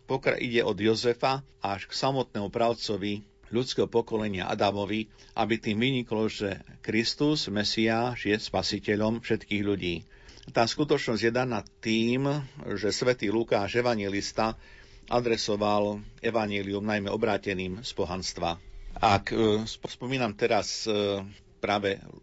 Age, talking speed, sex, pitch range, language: 50-69, 110 wpm, male, 105-115 Hz, Slovak